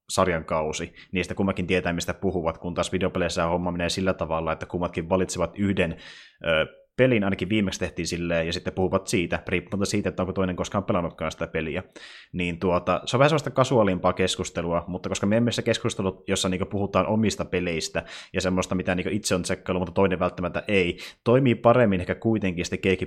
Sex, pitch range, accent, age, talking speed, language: male, 90-100 Hz, native, 20-39, 180 wpm, Finnish